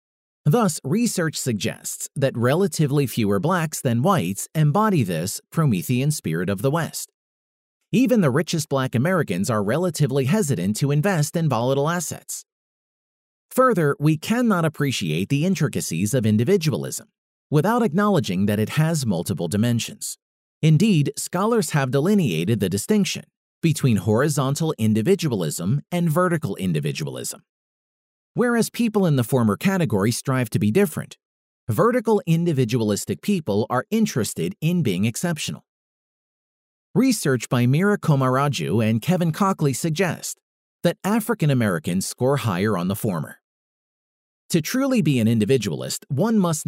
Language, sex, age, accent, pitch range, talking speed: English, male, 40-59, American, 125-190 Hz, 125 wpm